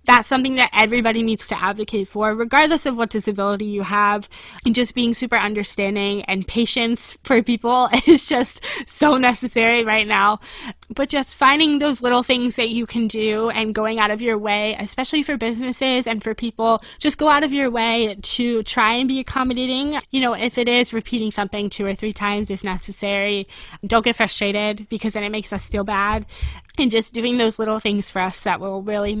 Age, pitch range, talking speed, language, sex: 10-29, 210-255 Hz, 195 wpm, English, female